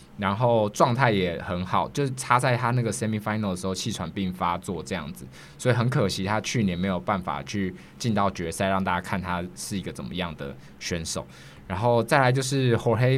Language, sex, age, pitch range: Chinese, male, 20-39, 95-125 Hz